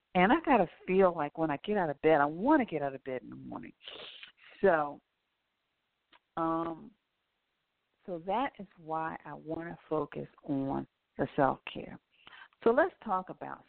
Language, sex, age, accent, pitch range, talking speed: English, female, 50-69, American, 145-185 Hz, 170 wpm